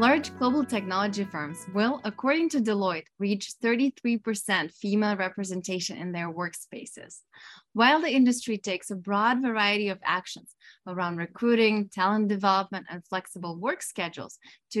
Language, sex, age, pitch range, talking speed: English, female, 20-39, 185-235 Hz, 135 wpm